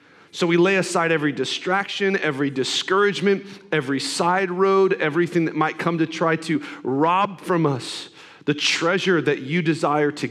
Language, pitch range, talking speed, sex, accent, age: English, 115-155 Hz, 155 wpm, male, American, 40-59